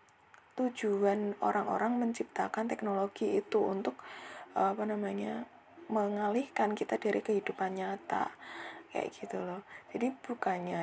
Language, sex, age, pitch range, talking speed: Indonesian, female, 20-39, 190-245 Hz, 100 wpm